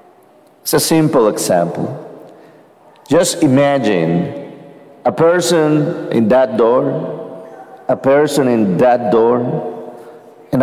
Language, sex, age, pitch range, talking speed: English, male, 50-69, 110-175 Hz, 95 wpm